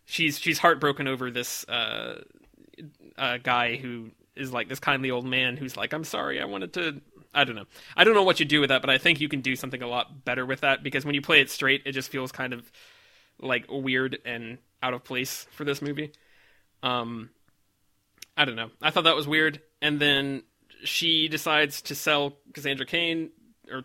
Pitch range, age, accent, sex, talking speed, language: 125-155 Hz, 20-39, American, male, 210 wpm, English